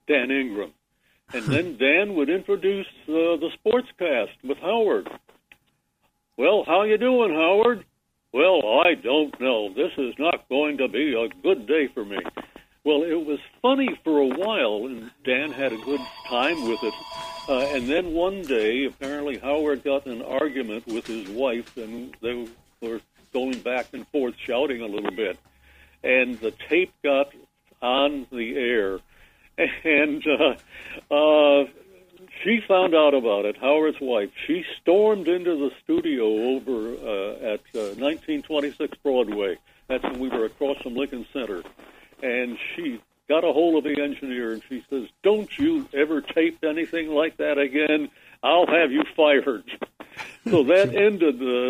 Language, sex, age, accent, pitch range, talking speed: English, male, 60-79, American, 125-175 Hz, 160 wpm